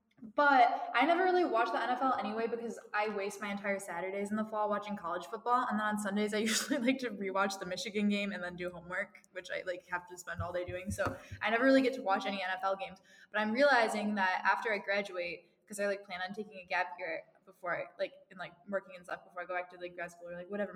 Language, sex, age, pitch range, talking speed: English, female, 10-29, 185-235 Hz, 260 wpm